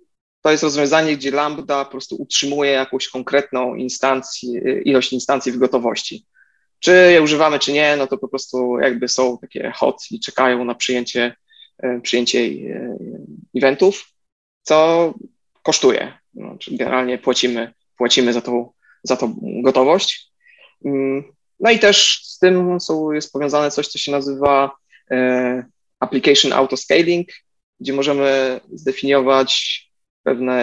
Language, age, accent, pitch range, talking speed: Polish, 20-39, native, 130-145 Hz, 125 wpm